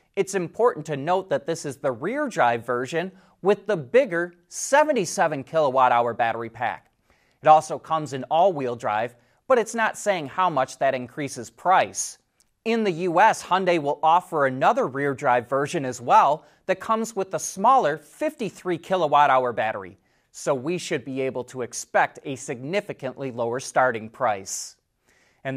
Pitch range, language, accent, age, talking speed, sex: 135-190 Hz, English, American, 30-49, 145 wpm, male